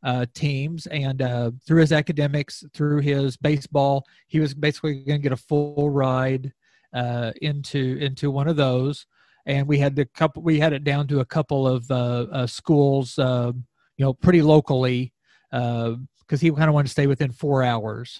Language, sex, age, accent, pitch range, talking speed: English, male, 40-59, American, 130-155 Hz, 190 wpm